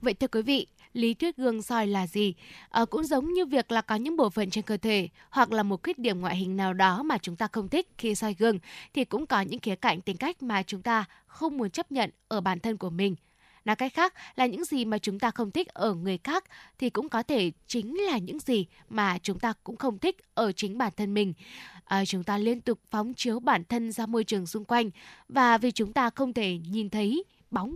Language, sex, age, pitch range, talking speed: Vietnamese, female, 10-29, 200-245 Hz, 245 wpm